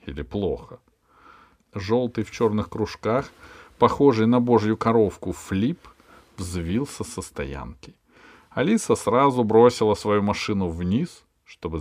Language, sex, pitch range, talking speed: Russian, male, 95-125 Hz, 105 wpm